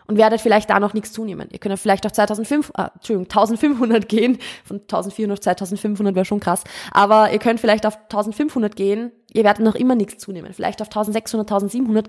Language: German